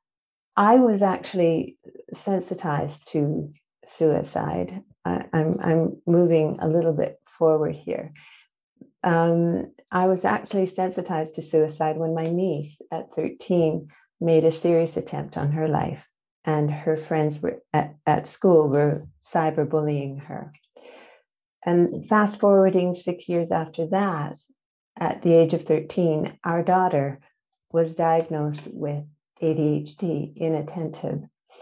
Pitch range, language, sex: 155-180 Hz, English, female